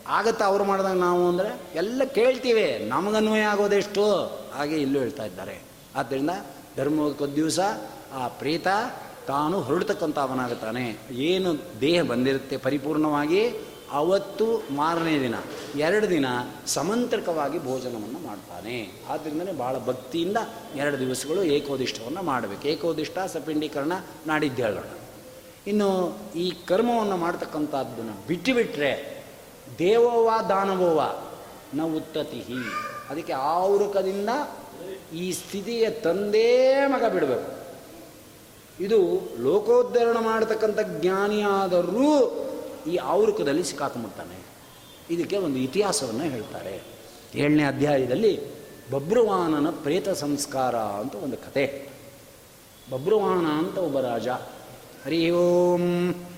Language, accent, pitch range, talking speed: Kannada, native, 145-215 Hz, 85 wpm